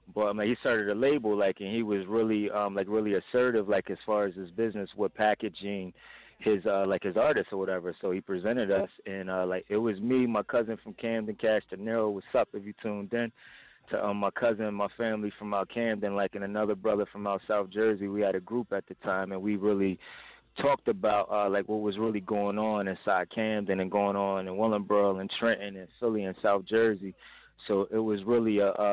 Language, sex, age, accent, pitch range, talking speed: English, male, 20-39, American, 100-110 Hz, 225 wpm